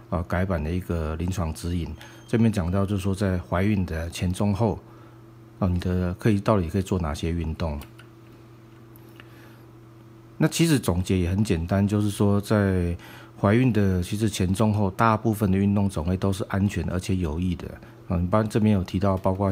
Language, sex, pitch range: Chinese, male, 90-110 Hz